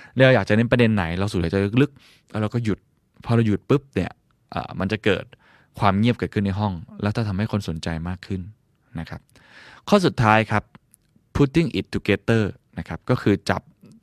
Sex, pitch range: male, 100-125 Hz